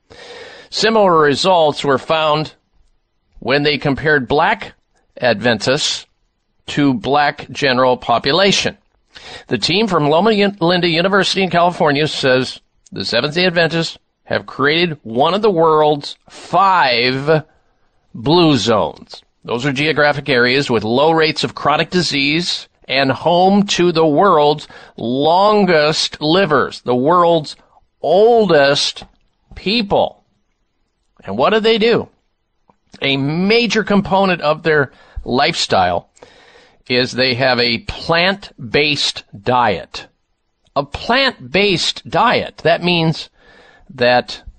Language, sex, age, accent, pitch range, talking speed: English, male, 50-69, American, 135-180 Hz, 105 wpm